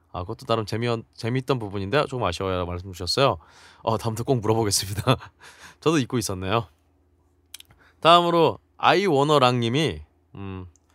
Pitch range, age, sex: 90-145 Hz, 20-39, male